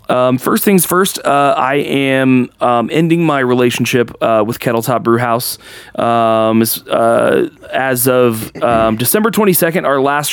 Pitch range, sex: 120-145 Hz, male